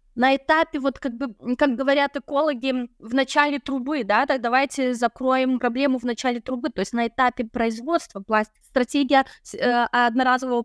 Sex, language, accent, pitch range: female, Russian, native, 230-270 Hz